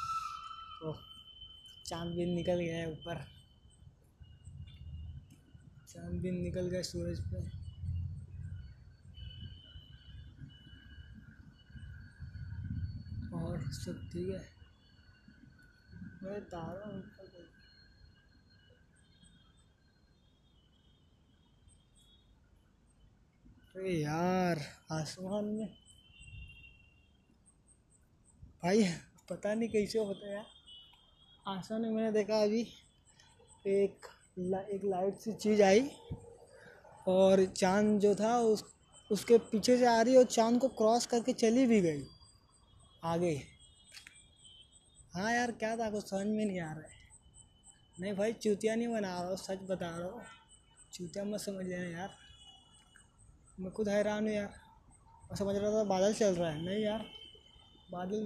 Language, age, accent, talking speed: Hindi, 20-39, native, 100 wpm